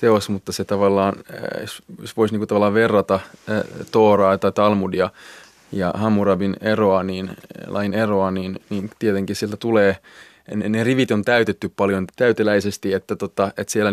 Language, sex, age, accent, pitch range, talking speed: Finnish, male, 20-39, native, 95-105 Hz, 145 wpm